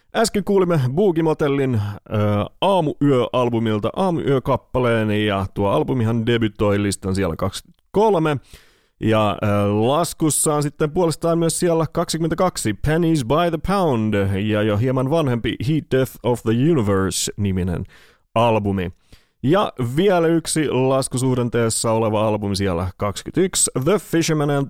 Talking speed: 115 wpm